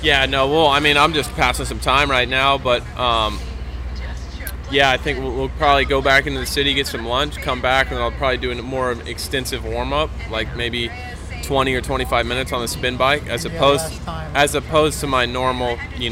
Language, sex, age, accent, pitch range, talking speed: English, male, 20-39, American, 95-125 Hz, 210 wpm